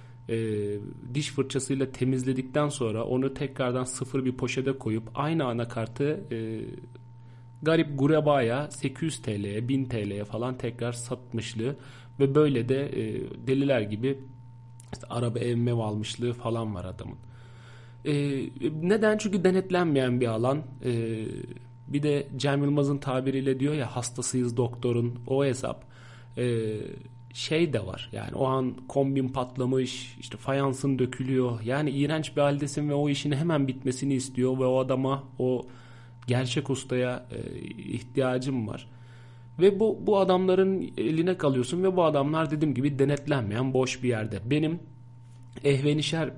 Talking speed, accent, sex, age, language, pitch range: 130 wpm, native, male, 40-59, Turkish, 120-140 Hz